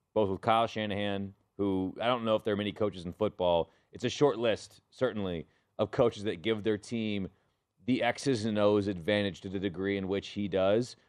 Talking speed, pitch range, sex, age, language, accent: 205 wpm, 95-115 Hz, male, 30-49, English, American